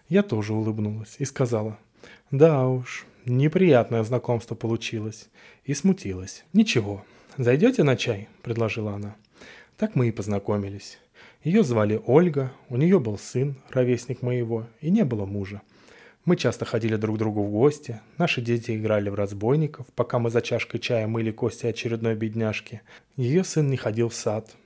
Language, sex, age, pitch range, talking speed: Russian, male, 20-39, 110-145 Hz, 155 wpm